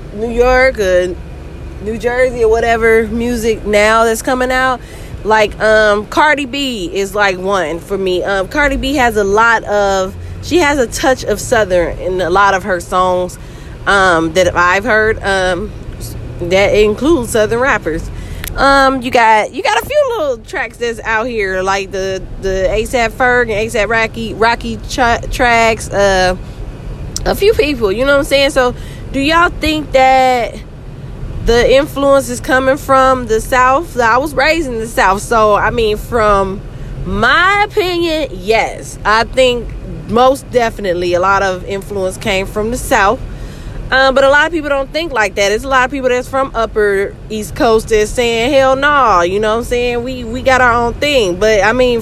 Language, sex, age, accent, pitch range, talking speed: English, female, 20-39, American, 195-260 Hz, 180 wpm